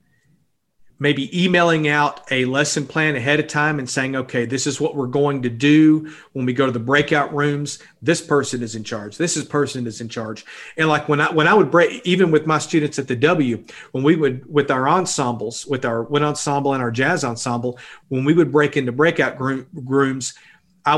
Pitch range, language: 130-155 Hz, English